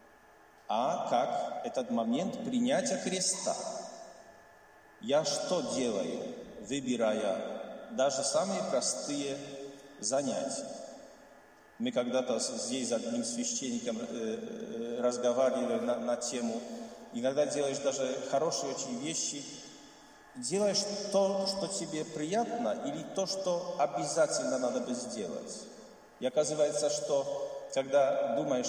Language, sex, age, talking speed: Russian, male, 40-59, 100 wpm